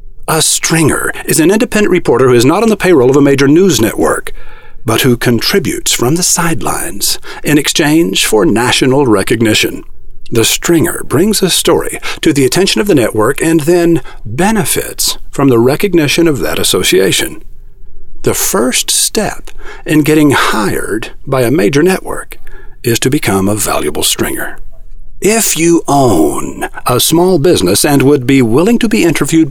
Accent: American